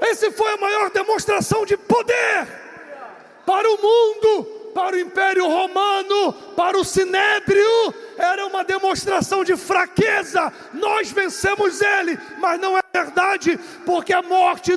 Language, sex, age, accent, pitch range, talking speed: English, male, 40-59, Brazilian, 345-385 Hz, 130 wpm